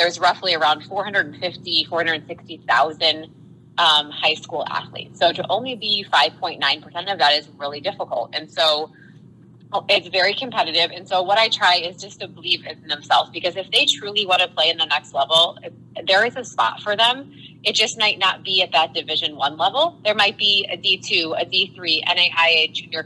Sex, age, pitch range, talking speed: female, 20-39, 160-205 Hz, 185 wpm